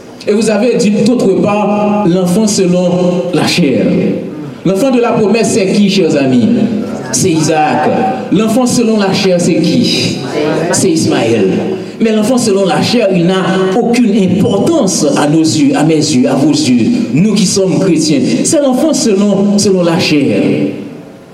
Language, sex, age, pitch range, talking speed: French, male, 60-79, 160-215 Hz, 155 wpm